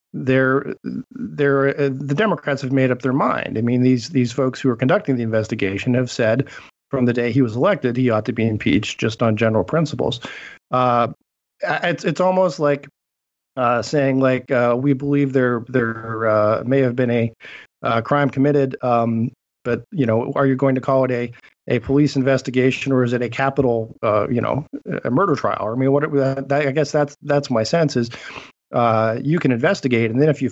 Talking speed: 200 wpm